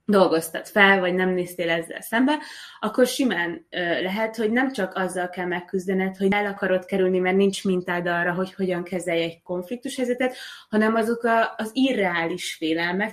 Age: 20-39